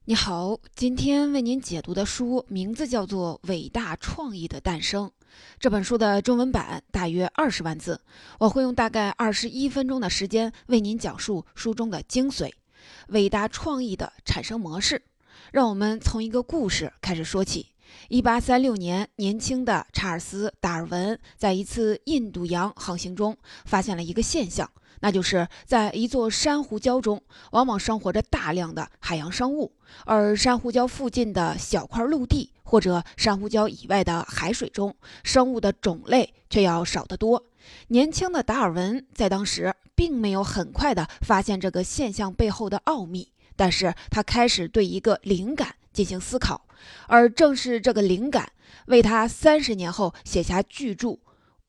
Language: Chinese